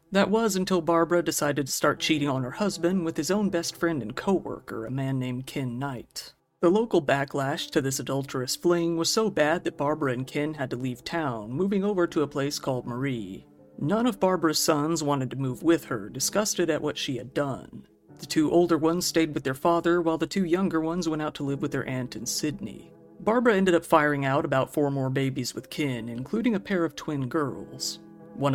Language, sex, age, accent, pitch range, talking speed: English, male, 50-69, American, 135-170 Hz, 215 wpm